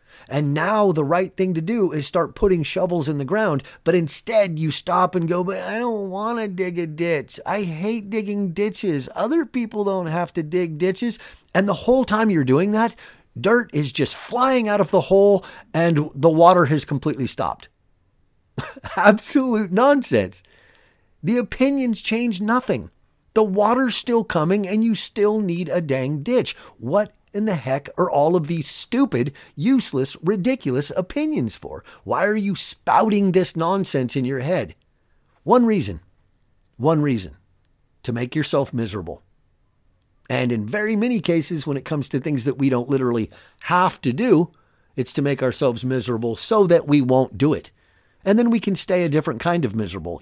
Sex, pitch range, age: male, 135-210 Hz, 30-49